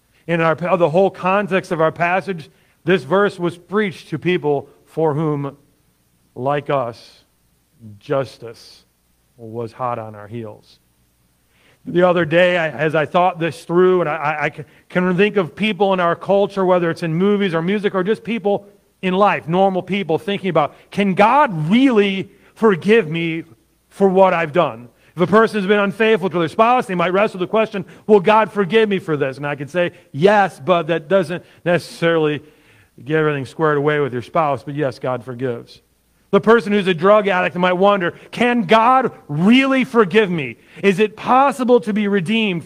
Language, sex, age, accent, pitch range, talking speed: English, male, 40-59, American, 150-205 Hz, 180 wpm